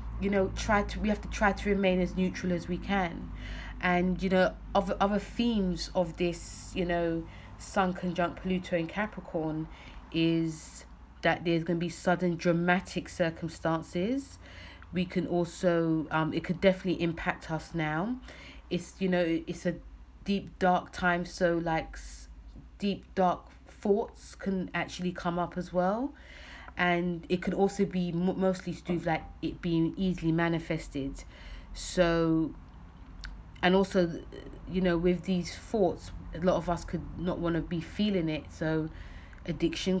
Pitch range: 170-190 Hz